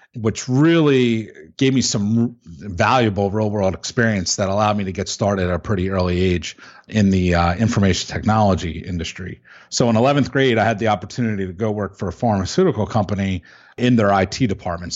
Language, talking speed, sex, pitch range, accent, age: English, 175 wpm, male, 95-120 Hz, American, 40-59